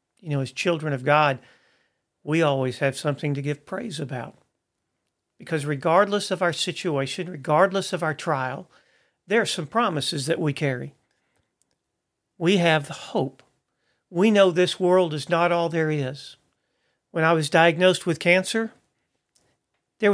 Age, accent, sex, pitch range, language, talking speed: 40-59, American, male, 145-180 Hz, English, 150 wpm